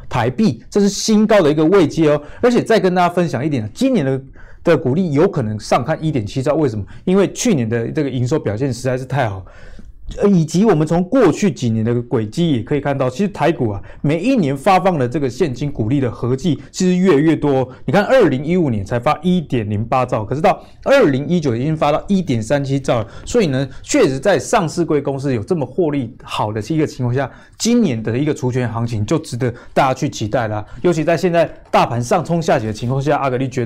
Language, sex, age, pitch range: Chinese, male, 20-39, 120-170 Hz